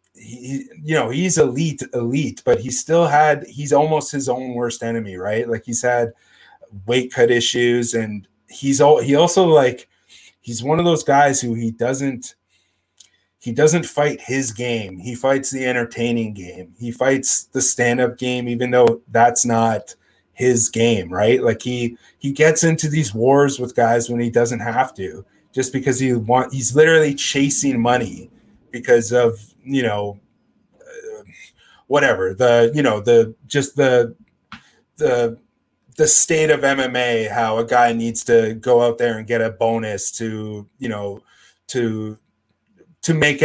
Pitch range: 115-135 Hz